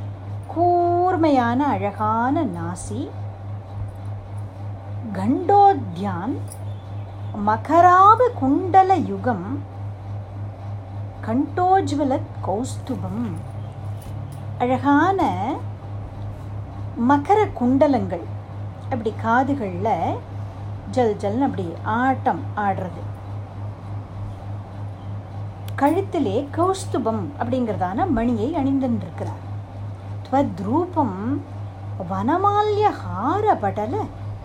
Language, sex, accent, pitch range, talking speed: Tamil, female, native, 100-115 Hz, 45 wpm